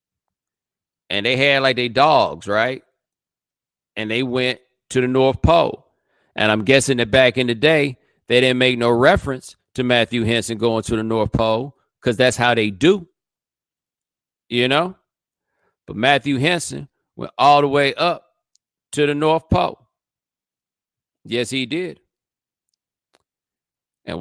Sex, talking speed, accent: male, 145 wpm, American